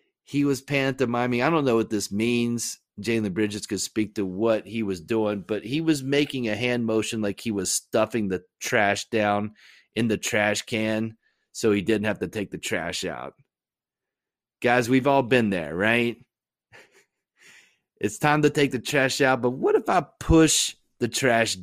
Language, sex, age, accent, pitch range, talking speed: English, male, 30-49, American, 105-135 Hz, 185 wpm